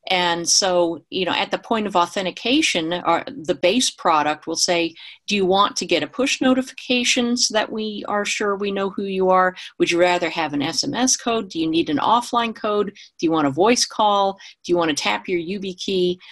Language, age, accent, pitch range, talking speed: English, 50-69, American, 170-225 Hz, 215 wpm